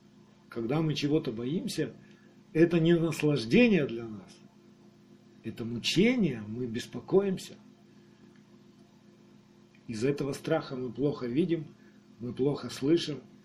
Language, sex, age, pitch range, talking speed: Russian, male, 40-59, 120-160 Hz, 100 wpm